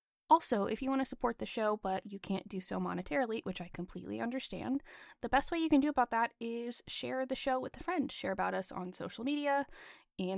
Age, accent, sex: 20-39, American, female